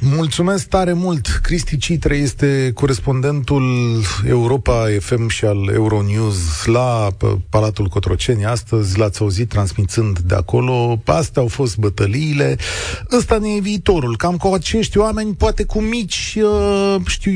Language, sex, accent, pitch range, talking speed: Romanian, male, native, 105-150 Hz, 130 wpm